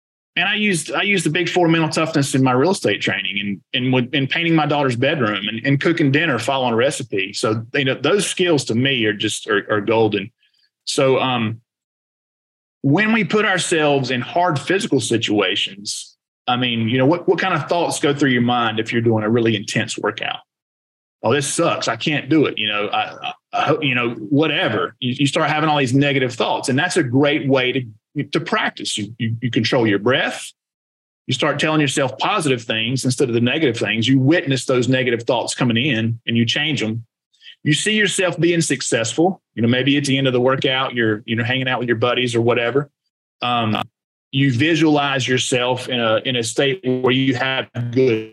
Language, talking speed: English, 205 wpm